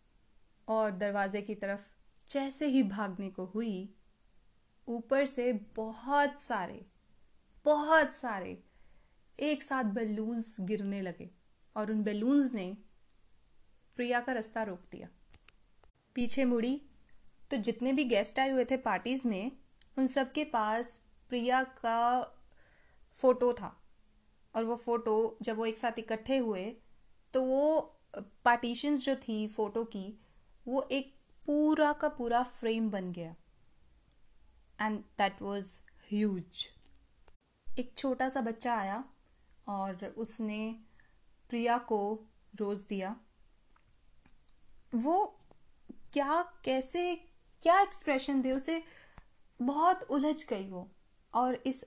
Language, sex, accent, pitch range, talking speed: Hindi, female, native, 210-265 Hz, 115 wpm